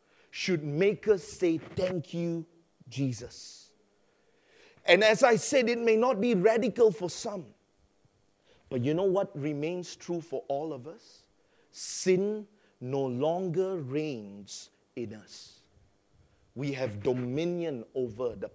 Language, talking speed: English, 125 wpm